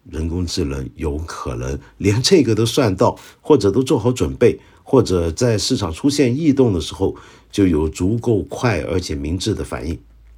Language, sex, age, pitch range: Chinese, male, 50-69, 80-120 Hz